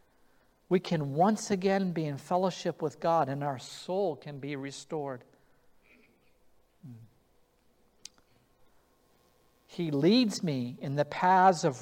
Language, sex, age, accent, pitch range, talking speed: English, male, 50-69, American, 160-225 Hz, 110 wpm